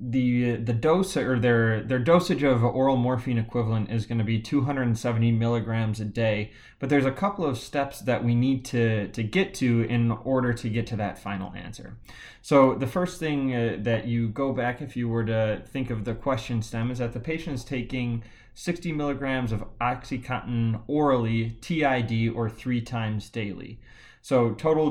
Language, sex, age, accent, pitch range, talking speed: English, male, 20-39, American, 115-130 Hz, 180 wpm